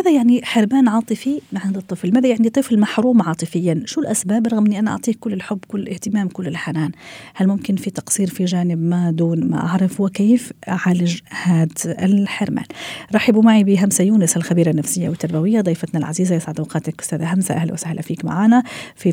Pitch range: 165-205 Hz